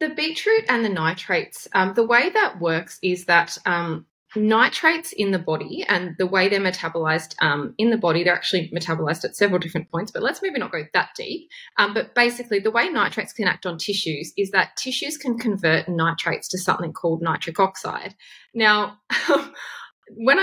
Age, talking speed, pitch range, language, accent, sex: 20-39, 180 wpm, 170-240 Hz, English, Australian, female